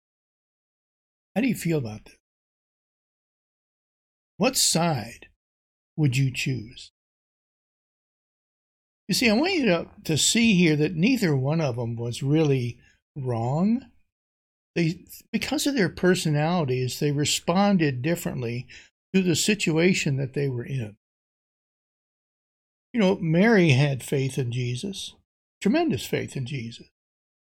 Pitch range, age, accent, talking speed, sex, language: 125-170 Hz, 60-79, American, 120 wpm, male, English